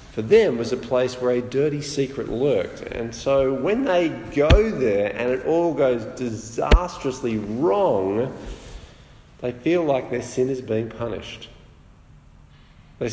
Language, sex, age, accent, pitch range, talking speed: English, male, 40-59, Australian, 100-130 Hz, 140 wpm